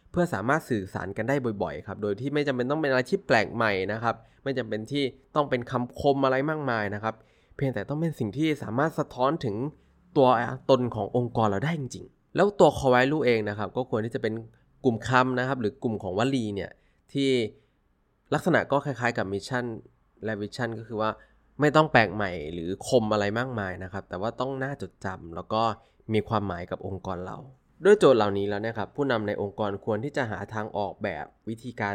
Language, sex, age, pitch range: Thai, male, 20-39, 105-135 Hz